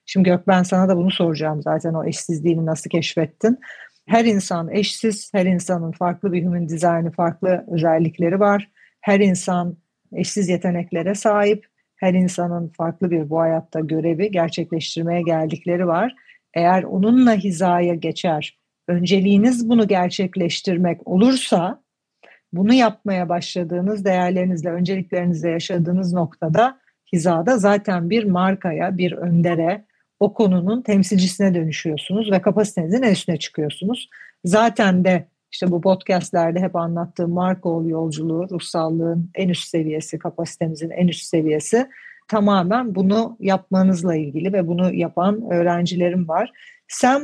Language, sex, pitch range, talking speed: Turkish, female, 170-200 Hz, 120 wpm